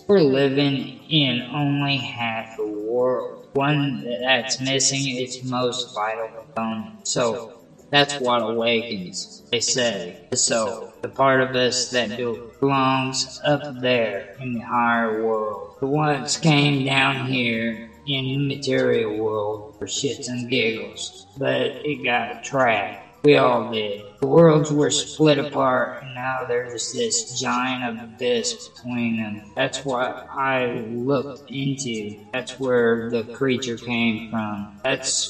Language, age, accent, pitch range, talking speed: English, 20-39, American, 115-135 Hz, 135 wpm